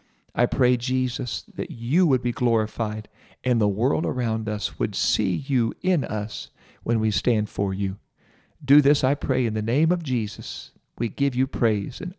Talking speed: 180 wpm